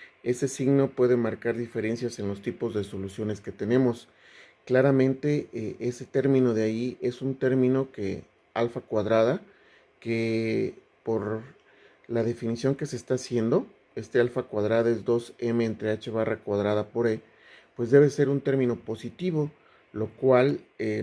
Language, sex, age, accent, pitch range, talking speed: Spanish, male, 40-59, Mexican, 110-130 Hz, 150 wpm